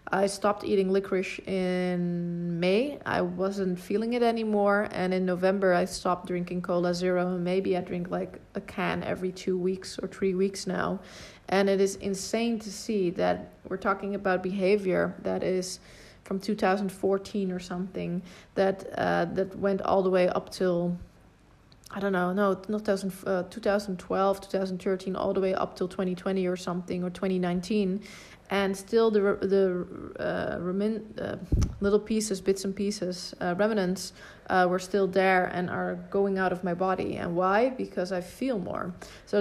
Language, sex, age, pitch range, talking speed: English, female, 30-49, 185-205 Hz, 165 wpm